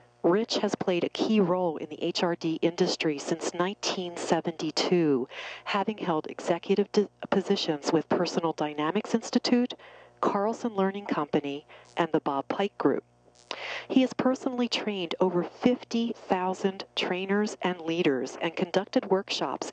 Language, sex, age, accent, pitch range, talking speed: English, female, 40-59, American, 155-210 Hz, 120 wpm